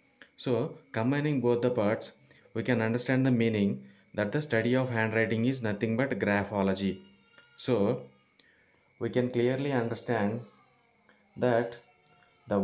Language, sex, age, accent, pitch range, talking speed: English, male, 20-39, Indian, 105-125 Hz, 125 wpm